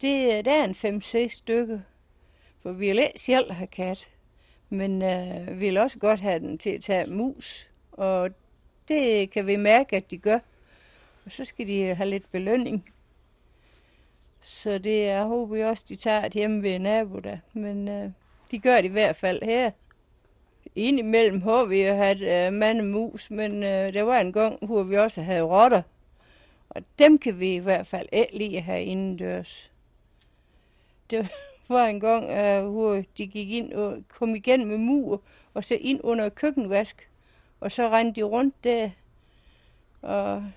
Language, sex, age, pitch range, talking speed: Danish, female, 60-79, 185-230 Hz, 175 wpm